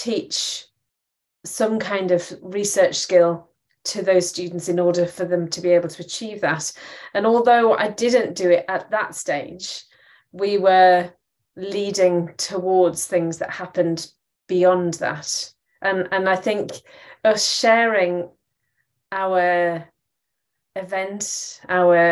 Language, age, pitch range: English, 30-49, 175-210 Hz